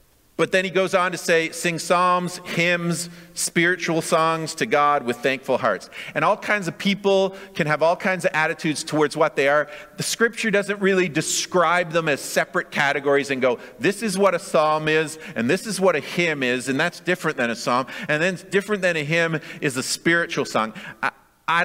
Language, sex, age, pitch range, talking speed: English, male, 40-59, 150-180 Hz, 205 wpm